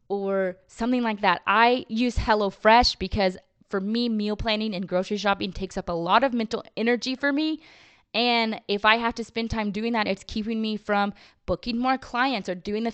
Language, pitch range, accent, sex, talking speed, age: English, 180-230 Hz, American, female, 200 wpm, 20-39